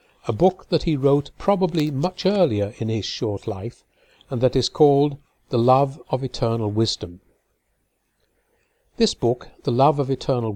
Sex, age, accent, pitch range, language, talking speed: male, 60-79, British, 115-155 Hz, English, 155 wpm